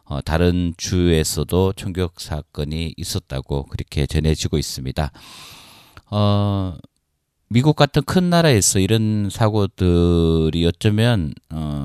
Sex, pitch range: male, 80-105 Hz